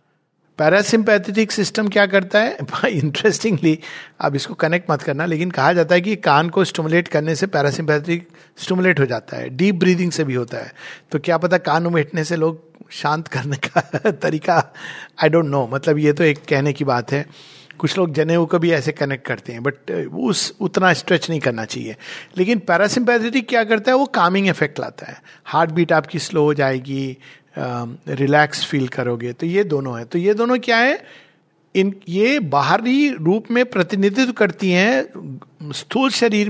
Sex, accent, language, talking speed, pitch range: male, native, Hindi, 180 wpm, 150-195 Hz